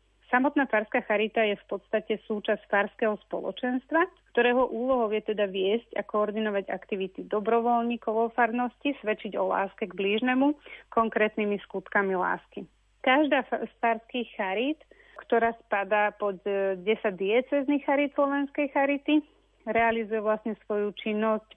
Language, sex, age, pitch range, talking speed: Slovak, female, 30-49, 200-235 Hz, 115 wpm